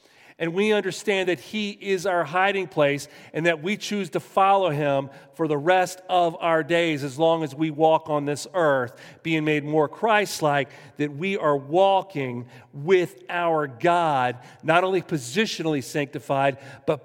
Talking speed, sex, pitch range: 160 wpm, male, 140-190 Hz